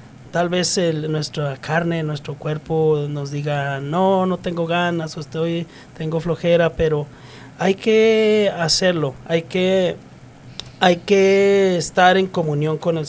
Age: 30-49